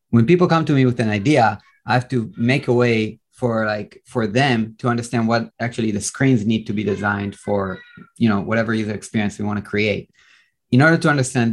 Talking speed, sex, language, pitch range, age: 220 wpm, male, English, 110-135 Hz, 30-49